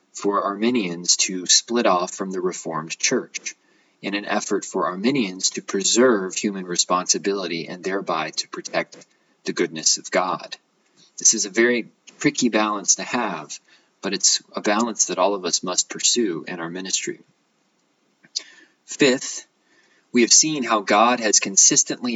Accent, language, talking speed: American, English, 150 wpm